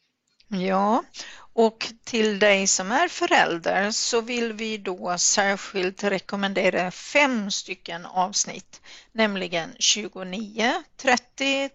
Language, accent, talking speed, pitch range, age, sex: Swedish, native, 95 wpm, 200-245 Hz, 50-69, female